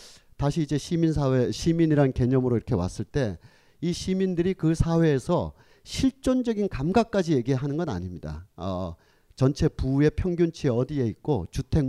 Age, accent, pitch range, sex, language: 40-59, native, 115-165 Hz, male, Korean